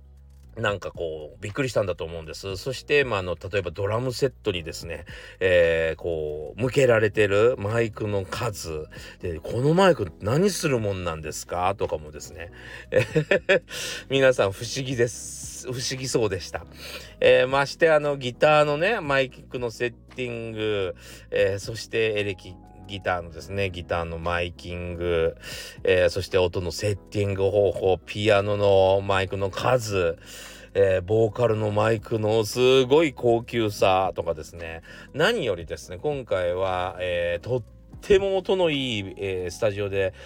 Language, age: Japanese, 40-59